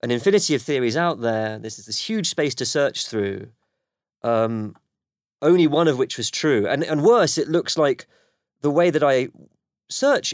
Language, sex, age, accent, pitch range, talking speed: English, male, 30-49, British, 115-160 Hz, 185 wpm